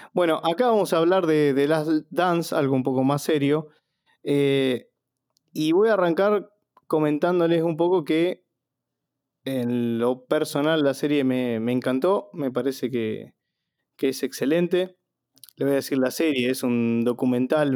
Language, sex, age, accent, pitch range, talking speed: Spanish, male, 20-39, Argentinian, 135-175 Hz, 155 wpm